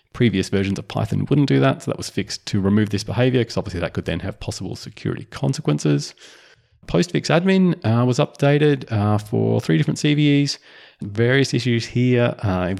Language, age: English, 30-49